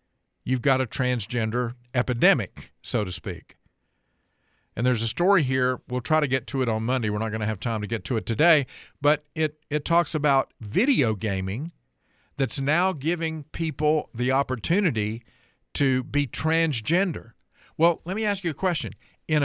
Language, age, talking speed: English, 50-69, 175 wpm